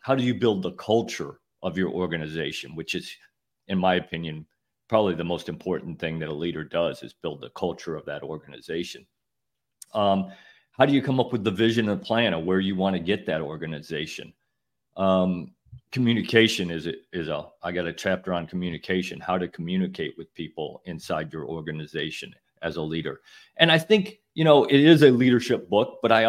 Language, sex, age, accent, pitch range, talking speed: English, male, 50-69, American, 85-115 Hz, 190 wpm